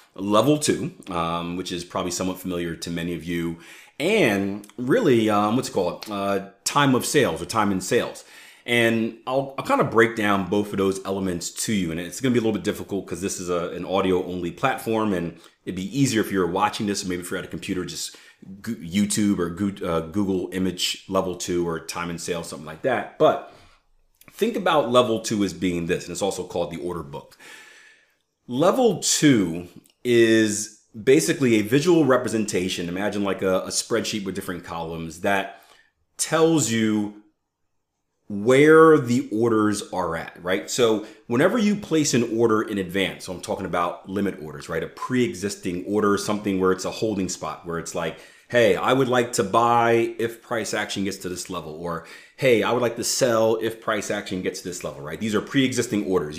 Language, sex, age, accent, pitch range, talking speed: English, male, 30-49, American, 90-115 Hz, 195 wpm